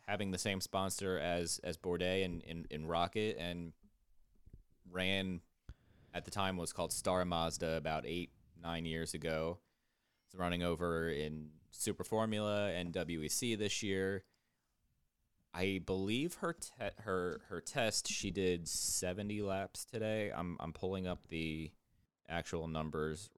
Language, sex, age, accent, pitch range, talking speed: English, male, 20-39, American, 80-100 Hz, 145 wpm